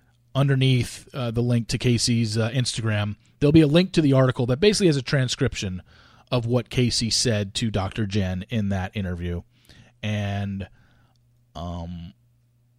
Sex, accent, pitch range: male, American, 105-140 Hz